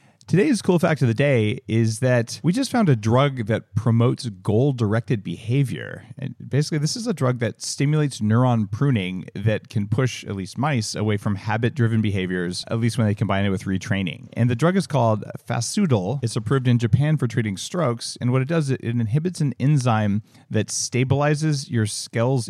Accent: American